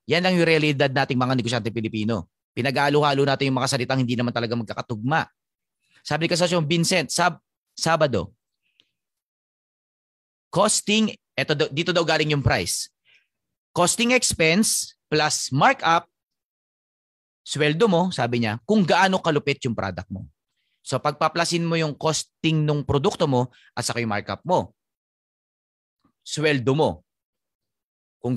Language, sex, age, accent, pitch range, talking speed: Filipino, male, 30-49, native, 120-160 Hz, 130 wpm